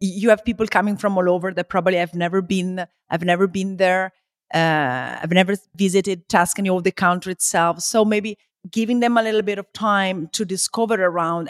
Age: 40-59